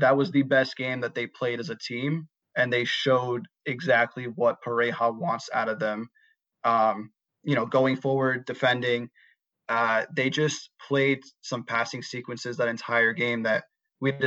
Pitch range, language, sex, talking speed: 120-140 Hz, English, male, 165 wpm